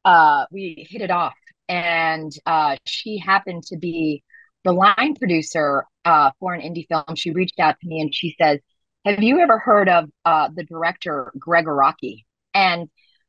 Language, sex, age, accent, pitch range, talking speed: English, female, 30-49, American, 160-200 Hz, 170 wpm